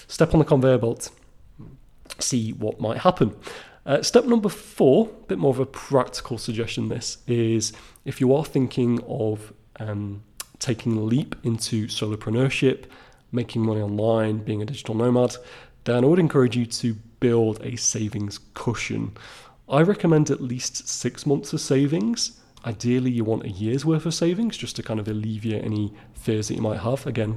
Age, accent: 30-49, British